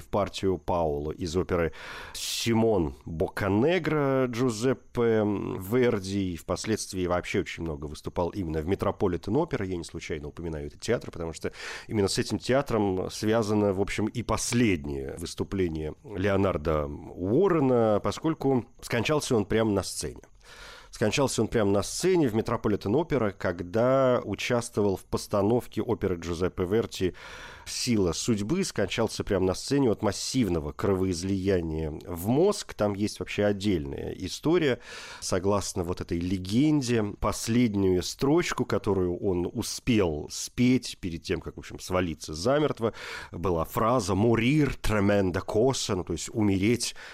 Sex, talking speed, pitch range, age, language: male, 130 wpm, 85-115 Hz, 40-59, Russian